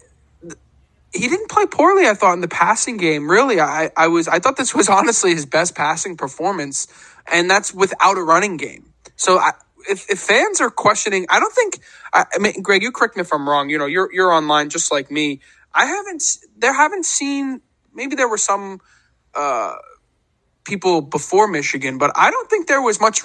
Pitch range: 145-210 Hz